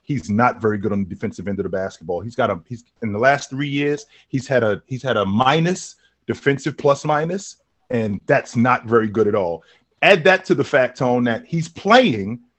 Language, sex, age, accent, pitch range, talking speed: English, male, 30-49, American, 125-175 Hz, 220 wpm